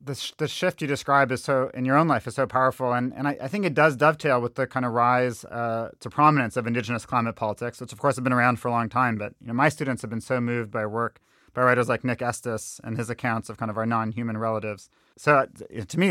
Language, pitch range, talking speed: English, 120-155 Hz, 275 wpm